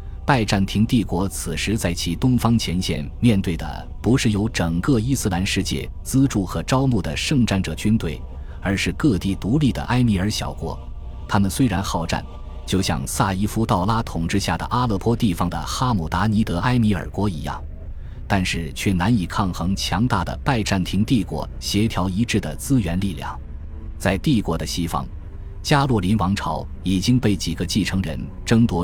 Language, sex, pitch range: Chinese, male, 80-105 Hz